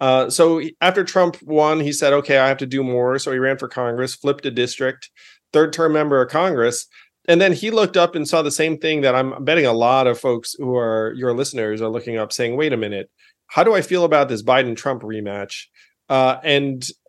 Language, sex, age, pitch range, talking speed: English, male, 40-59, 125-165 Hz, 225 wpm